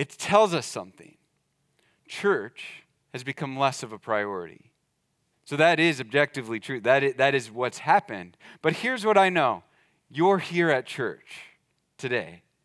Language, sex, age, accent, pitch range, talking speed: English, male, 30-49, American, 135-175 Hz, 145 wpm